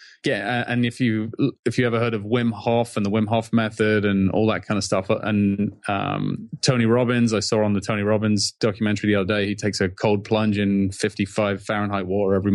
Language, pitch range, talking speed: English, 100-115 Hz, 220 wpm